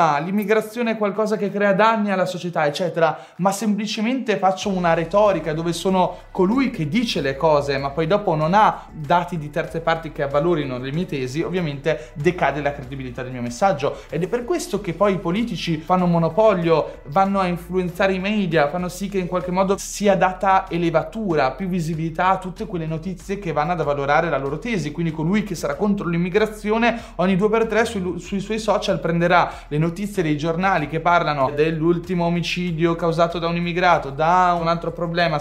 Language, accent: Italian, native